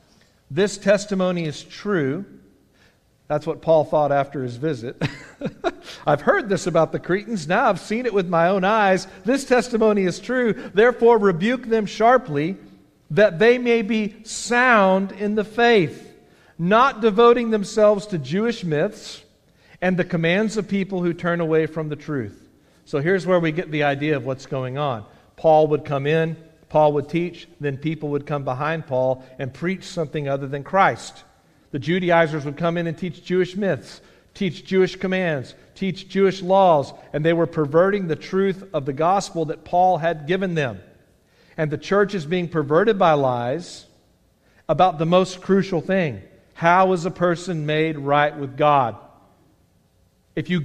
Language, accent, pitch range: English, American, 150-195 Hz